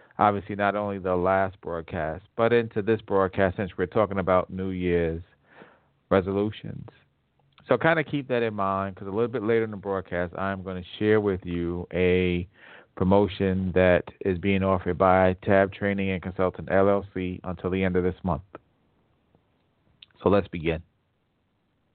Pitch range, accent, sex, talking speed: 95-110 Hz, American, male, 160 wpm